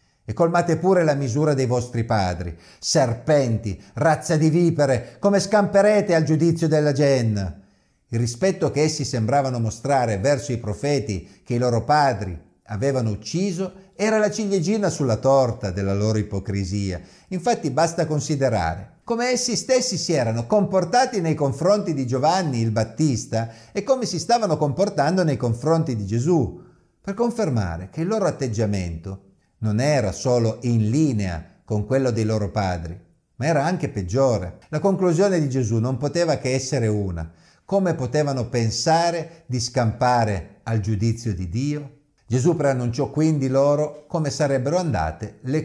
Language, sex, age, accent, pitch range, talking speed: Italian, male, 50-69, native, 110-165 Hz, 145 wpm